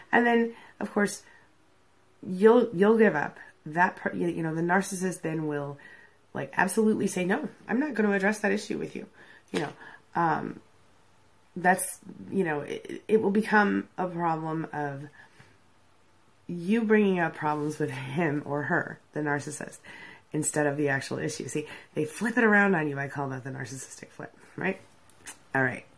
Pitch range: 150-220 Hz